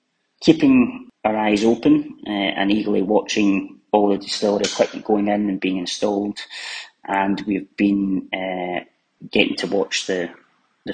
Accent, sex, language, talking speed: British, male, English, 145 wpm